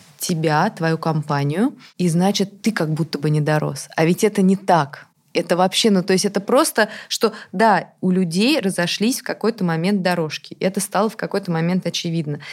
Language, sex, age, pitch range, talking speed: Russian, female, 20-39, 170-205 Hz, 185 wpm